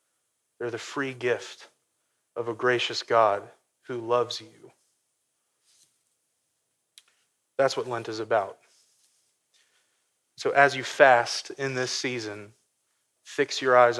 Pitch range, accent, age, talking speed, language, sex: 115-130 Hz, American, 30-49, 110 wpm, English, male